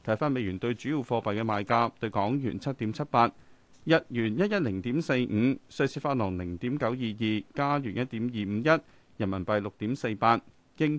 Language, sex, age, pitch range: Chinese, male, 30-49, 110-155 Hz